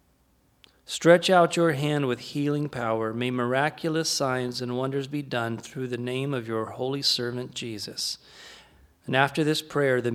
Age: 40-59